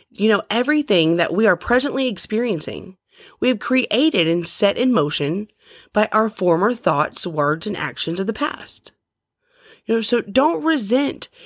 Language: English